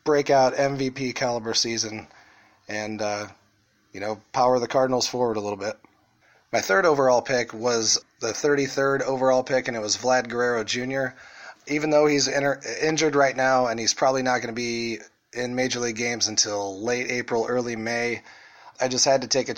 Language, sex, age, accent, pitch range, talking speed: English, male, 30-49, American, 115-135 Hz, 180 wpm